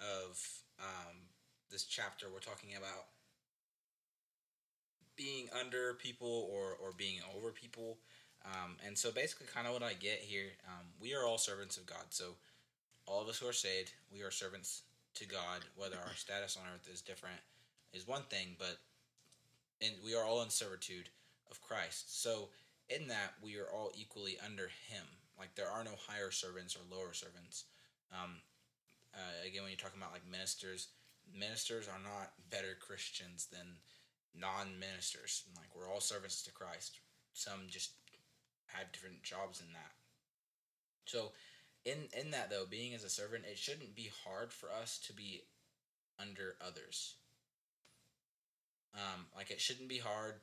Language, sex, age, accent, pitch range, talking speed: English, male, 20-39, American, 90-110 Hz, 160 wpm